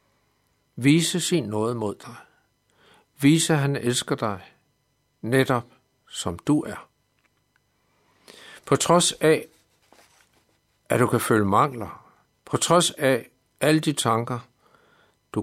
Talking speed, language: 115 wpm, Danish